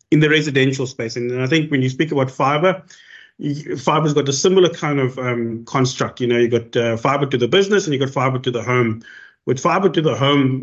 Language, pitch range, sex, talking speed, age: English, 130-155 Hz, male, 230 wpm, 30-49